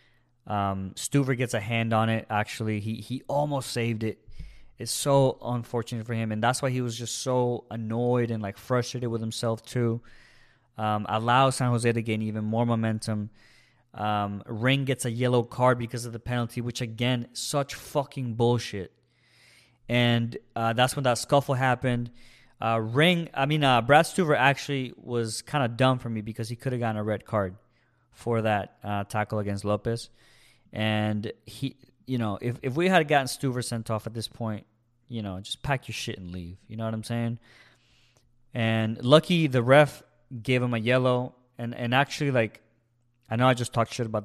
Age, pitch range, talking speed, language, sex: 20-39, 110-130 Hz, 185 wpm, English, male